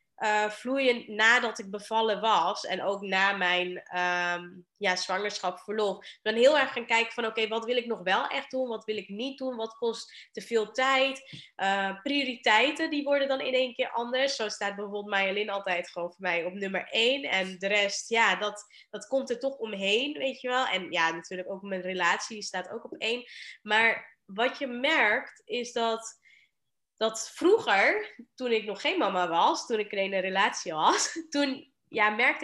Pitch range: 200-255 Hz